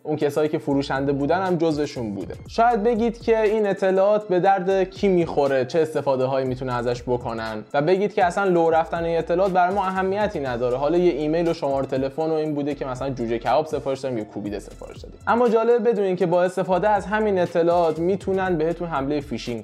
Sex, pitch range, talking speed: male, 150-205 Hz, 200 wpm